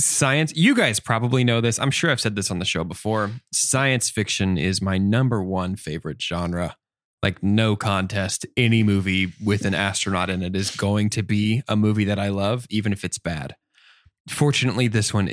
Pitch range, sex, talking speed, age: 95-115 Hz, male, 190 wpm, 20-39